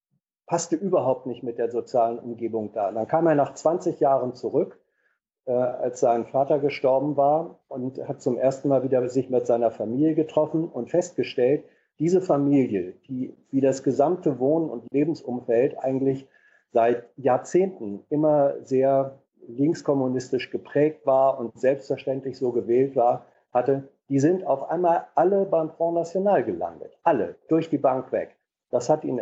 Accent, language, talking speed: German, German, 155 wpm